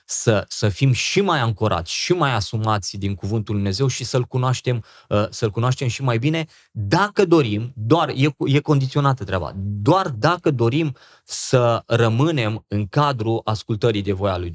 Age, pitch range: 20-39, 105-140 Hz